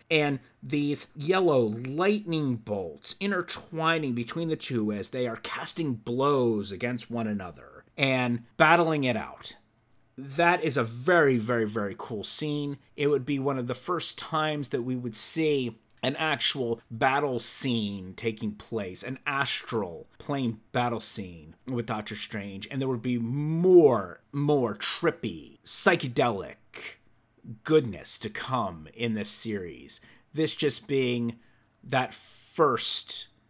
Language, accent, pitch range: English, American, 115-140 Hz